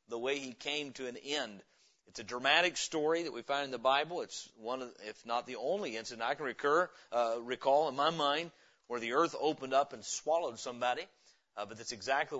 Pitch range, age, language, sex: 125-160 Hz, 40-59, English, male